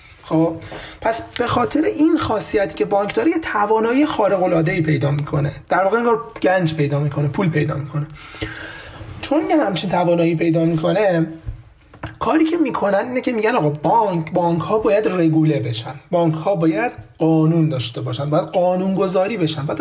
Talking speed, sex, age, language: 160 wpm, male, 30-49, Persian